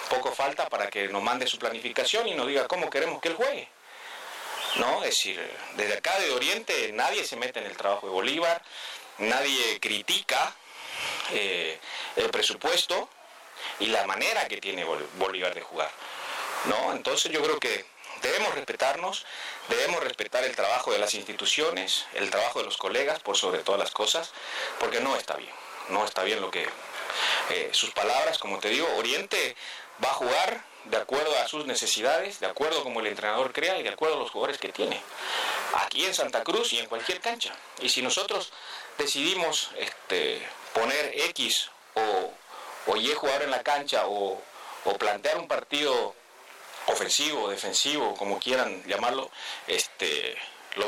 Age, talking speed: 40-59, 165 wpm